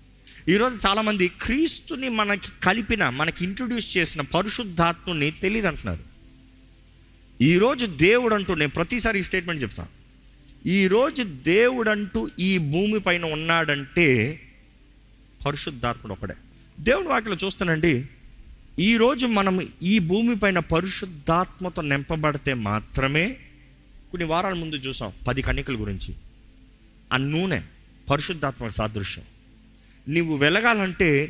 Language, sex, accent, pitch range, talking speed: Telugu, male, native, 130-195 Hz, 100 wpm